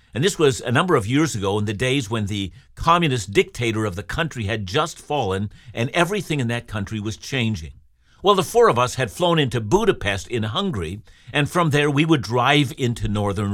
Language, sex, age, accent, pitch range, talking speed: English, male, 50-69, American, 105-150 Hz, 210 wpm